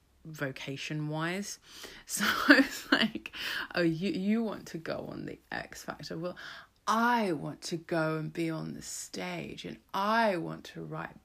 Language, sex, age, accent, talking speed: English, female, 30-49, British, 165 wpm